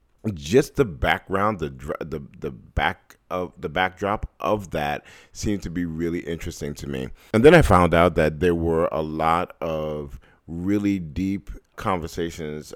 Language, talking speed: English, 155 wpm